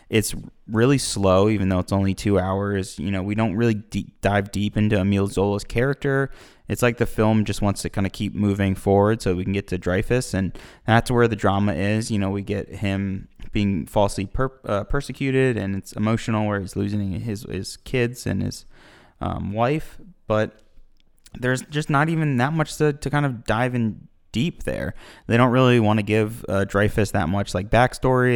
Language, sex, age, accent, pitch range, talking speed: English, male, 20-39, American, 100-120 Hz, 195 wpm